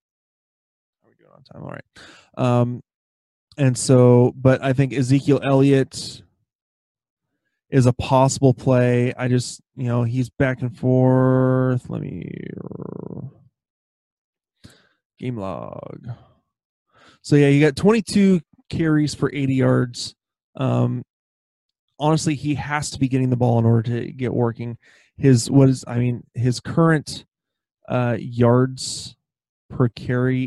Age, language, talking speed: 20-39, English, 120 wpm